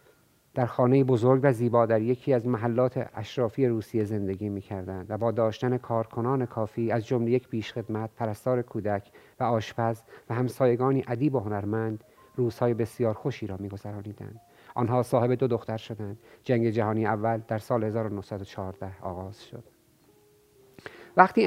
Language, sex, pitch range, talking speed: Persian, male, 110-130 Hz, 145 wpm